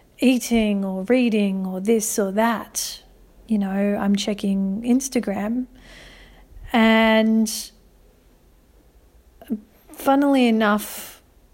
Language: English